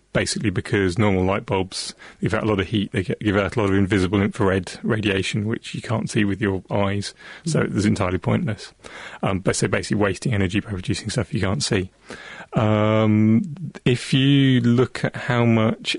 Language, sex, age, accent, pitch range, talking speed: English, male, 30-49, British, 100-110 Hz, 190 wpm